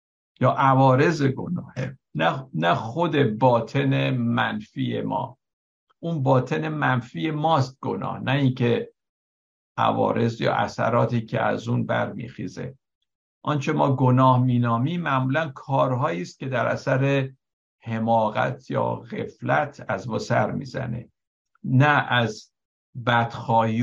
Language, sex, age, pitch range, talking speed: Persian, male, 60-79, 115-140 Hz, 110 wpm